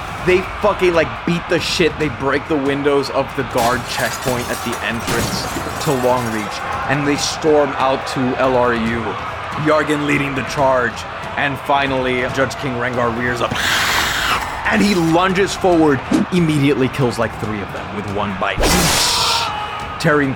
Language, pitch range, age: English, 120-150 Hz, 20-39